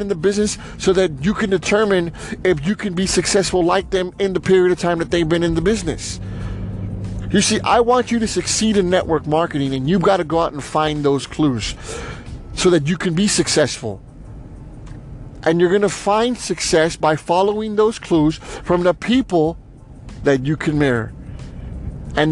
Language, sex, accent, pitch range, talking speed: English, male, American, 135-175 Hz, 190 wpm